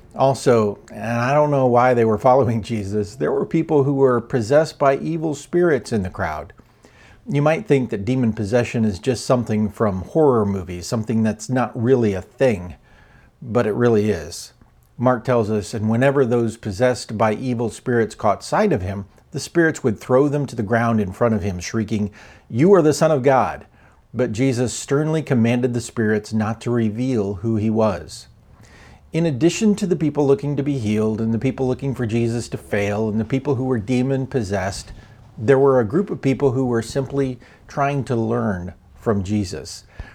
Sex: male